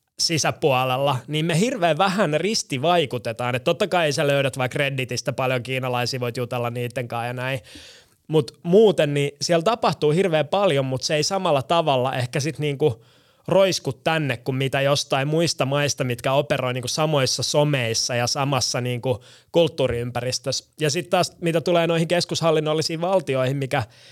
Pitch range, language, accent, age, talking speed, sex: 130-160 Hz, Finnish, native, 20-39, 150 wpm, male